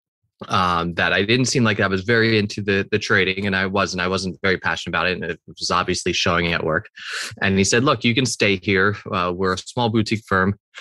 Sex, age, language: male, 20-39, English